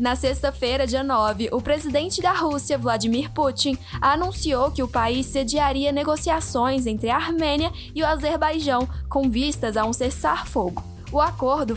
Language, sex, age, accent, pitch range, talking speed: Portuguese, female, 10-29, Brazilian, 245-310 Hz, 150 wpm